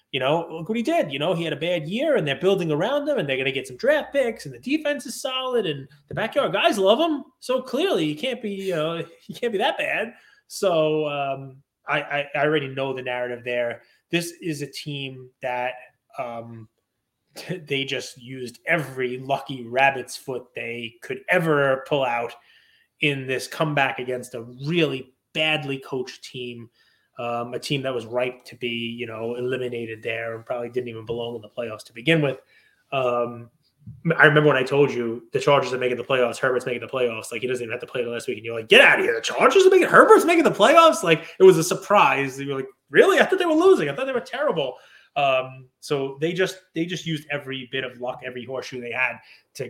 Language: English